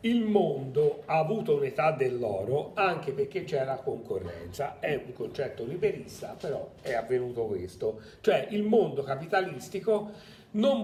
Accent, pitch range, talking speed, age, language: native, 130-200 Hz, 125 wpm, 40-59, Italian